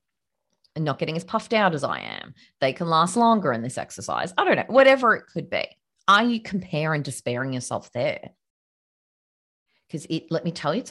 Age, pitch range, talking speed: 30-49, 140-200 Hz, 200 wpm